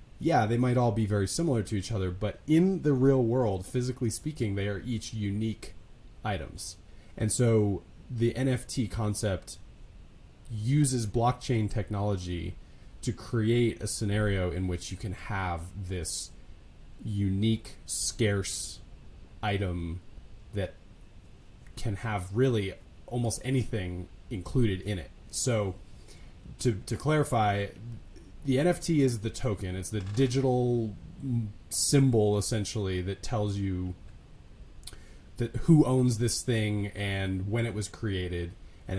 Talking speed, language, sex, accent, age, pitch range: 125 wpm, English, male, American, 30-49, 95-120 Hz